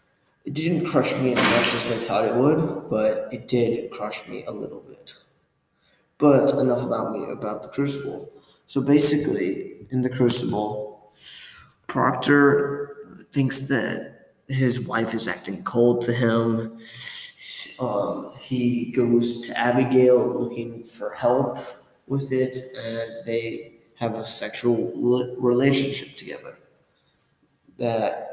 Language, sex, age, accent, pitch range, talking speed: English, male, 20-39, American, 115-135 Hz, 125 wpm